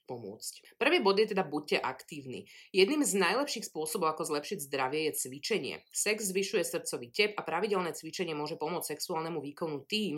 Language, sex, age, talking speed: Slovak, female, 30-49, 165 wpm